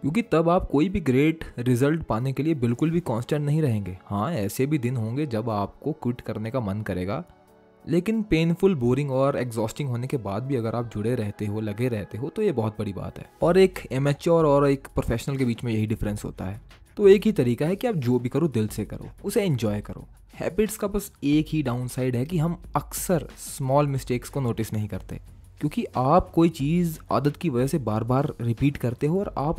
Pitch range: 110-160 Hz